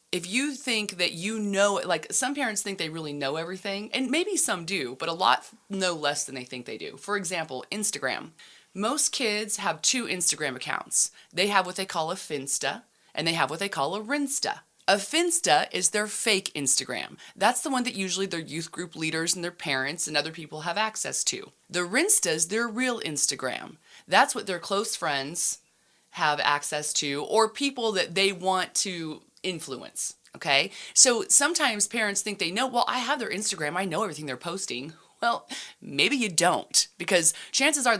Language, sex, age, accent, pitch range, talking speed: English, female, 30-49, American, 160-220 Hz, 190 wpm